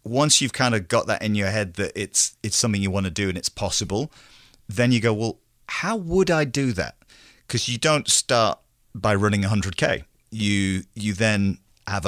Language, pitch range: English, 100-115 Hz